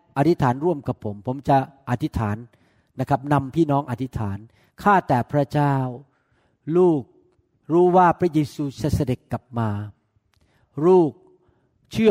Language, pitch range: Thai, 140-175 Hz